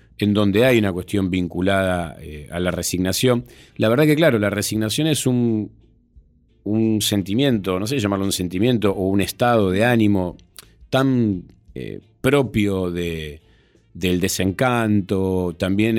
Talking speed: 135 wpm